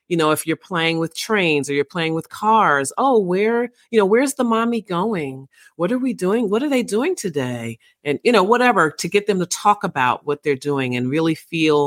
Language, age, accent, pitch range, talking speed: English, 40-59, American, 140-180 Hz, 230 wpm